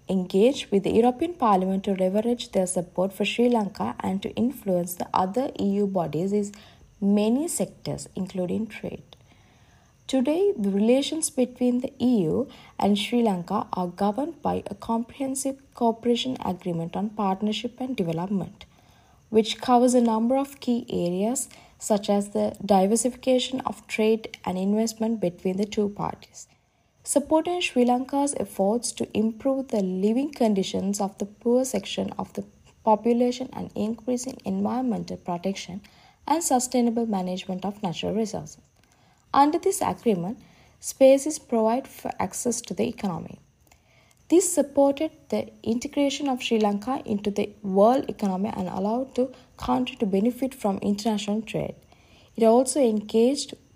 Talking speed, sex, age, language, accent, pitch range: 135 wpm, female, 20-39, English, Indian, 200-255 Hz